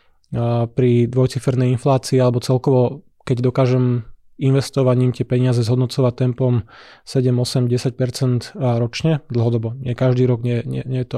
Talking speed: 125 wpm